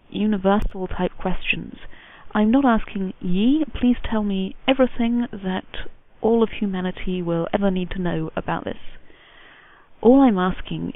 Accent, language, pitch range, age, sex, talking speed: British, English, 190-235 Hz, 30-49, female, 135 wpm